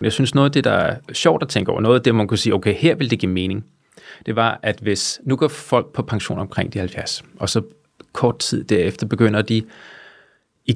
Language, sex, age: Danish, male, 30-49